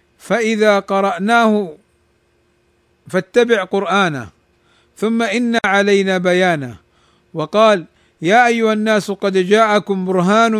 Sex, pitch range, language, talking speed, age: male, 185-220 Hz, Arabic, 85 wpm, 50-69